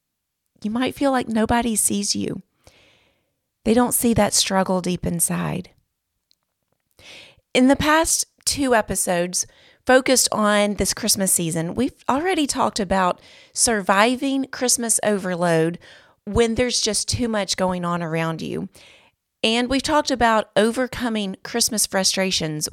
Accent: American